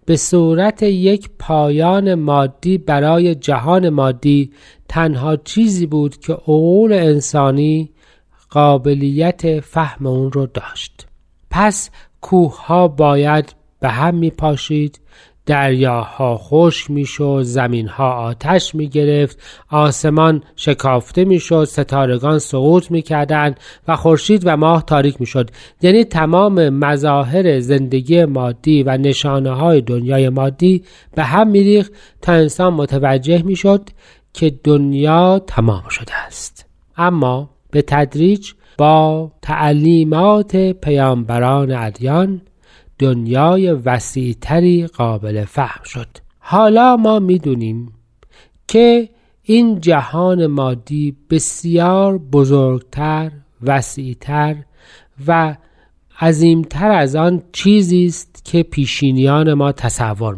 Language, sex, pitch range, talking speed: Persian, male, 135-175 Hz, 105 wpm